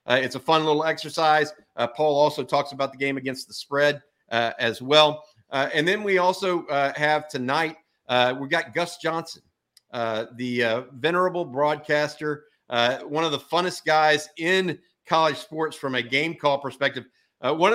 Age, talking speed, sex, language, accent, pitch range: 50-69, 180 wpm, male, English, American, 130-160 Hz